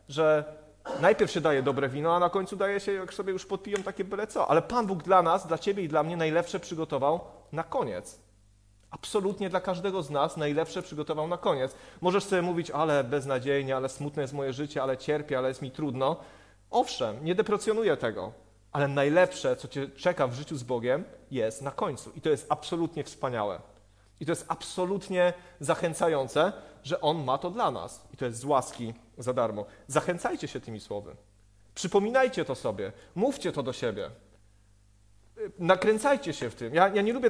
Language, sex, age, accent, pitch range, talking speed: Polish, male, 30-49, native, 140-180 Hz, 185 wpm